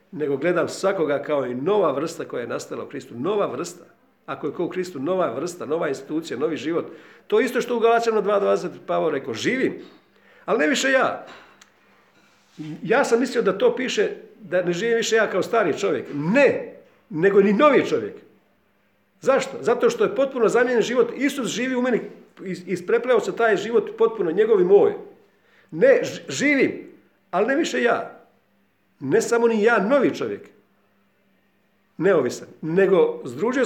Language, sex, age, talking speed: Croatian, male, 50-69, 160 wpm